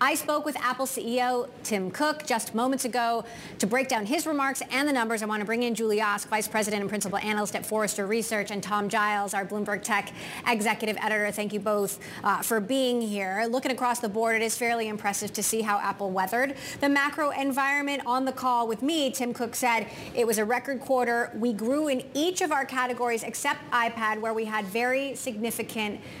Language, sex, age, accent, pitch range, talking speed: English, female, 30-49, American, 215-265 Hz, 210 wpm